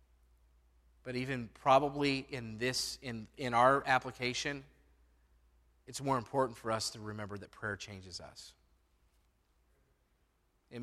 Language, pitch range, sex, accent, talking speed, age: English, 95-125 Hz, male, American, 115 wpm, 40-59